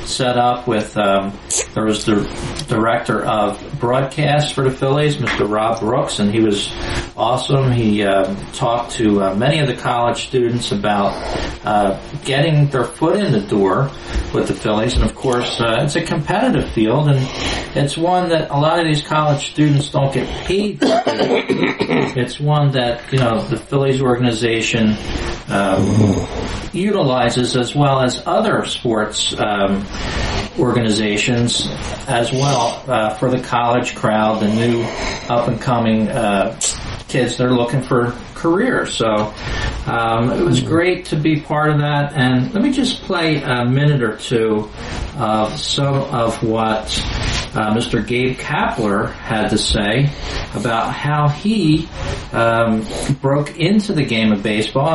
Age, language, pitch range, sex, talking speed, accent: 40-59, English, 110-145 Hz, male, 155 wpm, American